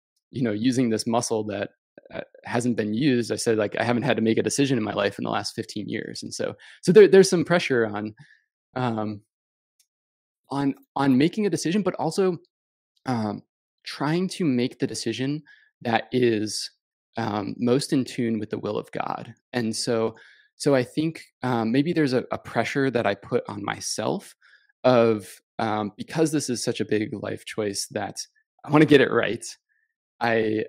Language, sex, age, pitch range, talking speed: English, male, 20-39, 115-150 Hz, 185 wpm